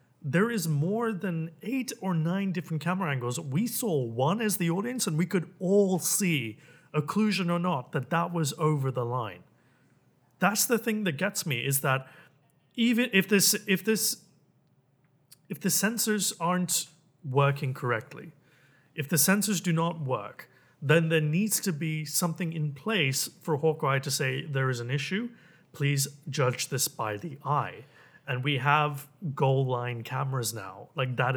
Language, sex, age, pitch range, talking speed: English, male, 30-49, 135-180 Hz, 165 wpm